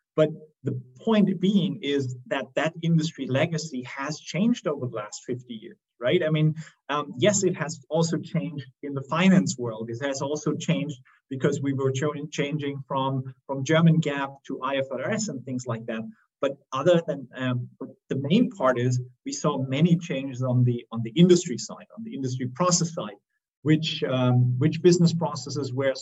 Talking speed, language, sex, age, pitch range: 180 wpm, English, male, 30-49, 130-160 Hz